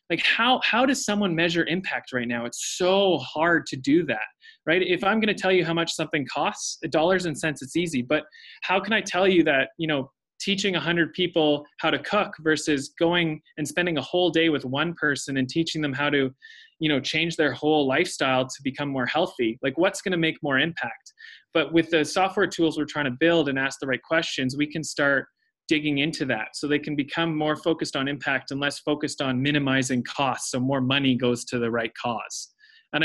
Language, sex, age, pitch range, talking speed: English, male, 20-39, 135-170 Hz, 220 wpm